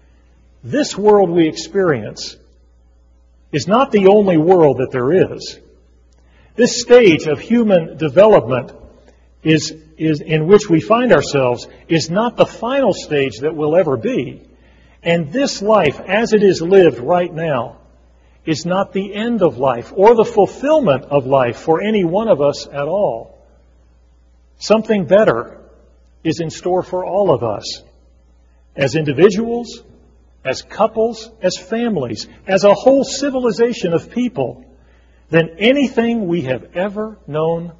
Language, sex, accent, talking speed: English, male, American, 140 wpm